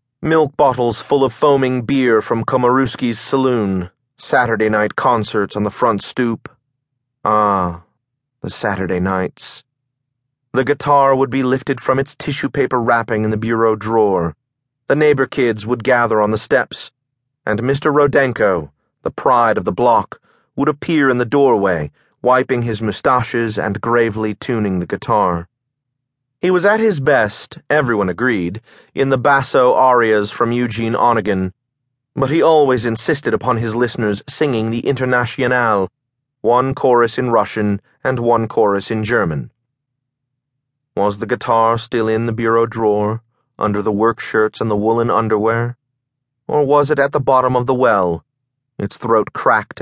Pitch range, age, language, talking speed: 110-130 Hz, 30-49, English, 150 wpm